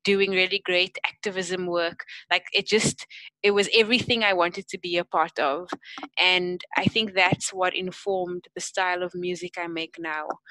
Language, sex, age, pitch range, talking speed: English, female, 20-39, 175-200 Hz, 175 wpm